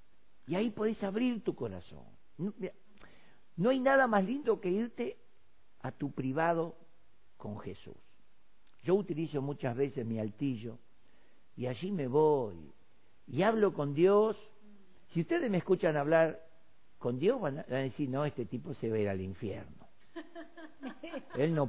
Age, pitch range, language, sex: 50-69, 150-235 Hz, Spanish, male